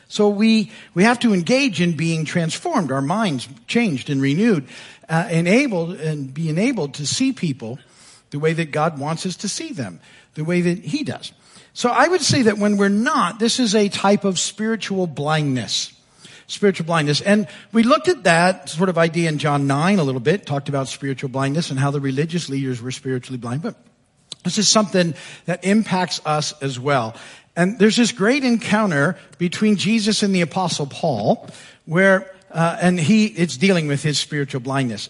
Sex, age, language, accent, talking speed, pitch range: male, 50-69, English, American, 185 wpm, 145-210 Hz